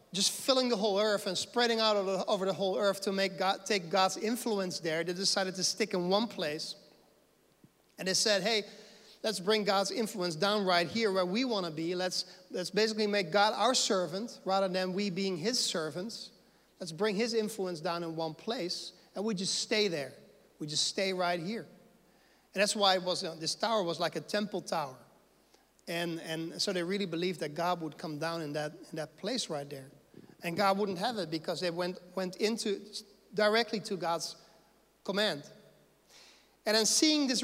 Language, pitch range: English, 180-220 Hz